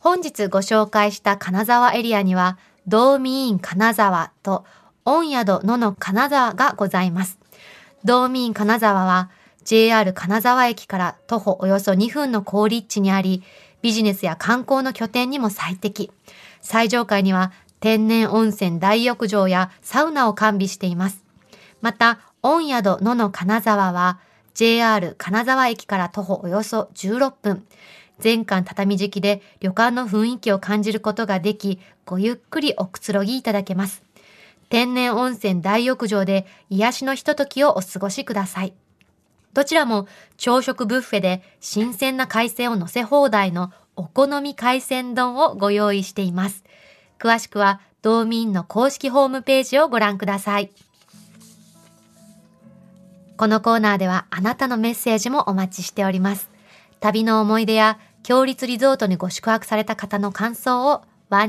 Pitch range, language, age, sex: 195-240 Hz, Japanese, 20-39, female